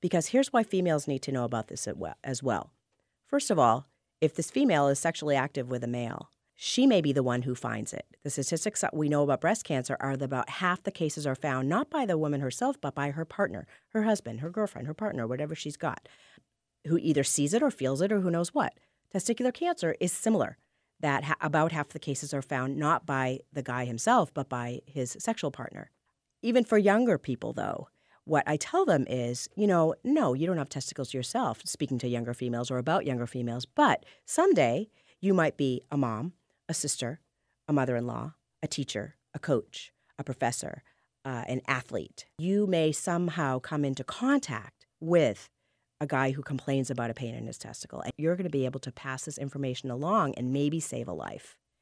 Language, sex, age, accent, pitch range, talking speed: English, female, 40-59, American, 130-170 Hz, 205 wpm